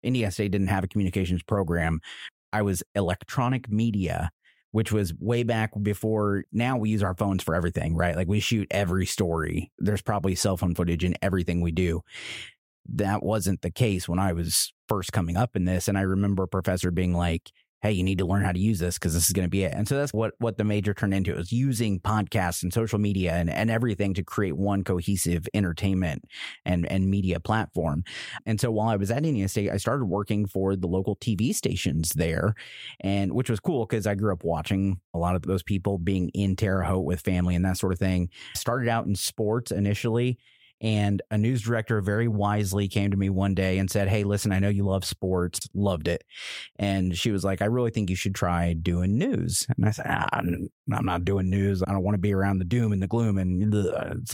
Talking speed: 225 wpm